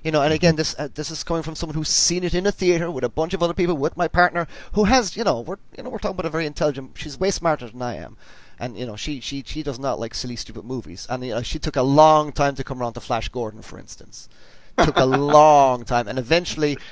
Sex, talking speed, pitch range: male, 280 wpm, 120-160 Hz